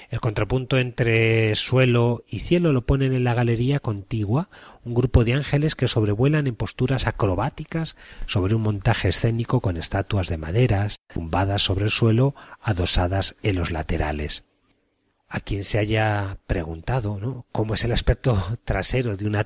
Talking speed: 150 wpm